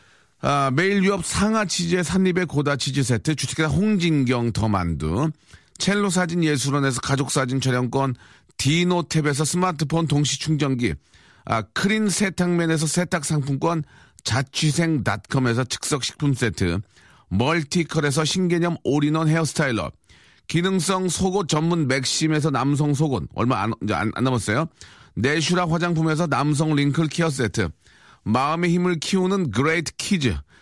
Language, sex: Korean, male